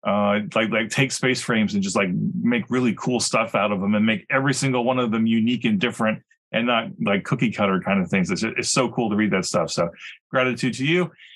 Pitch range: 110-130 Hz